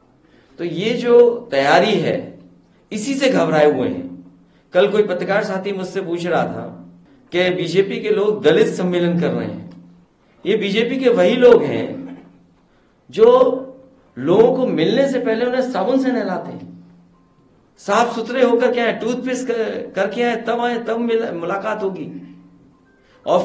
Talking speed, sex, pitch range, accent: 150 wpm, male, 145-235 Hz, native